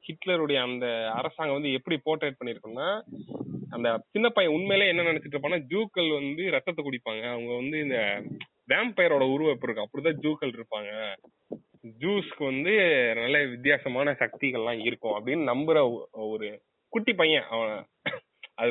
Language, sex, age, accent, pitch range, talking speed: Tamil, male, 20-39, native, 120-160 Hz, 105 wpm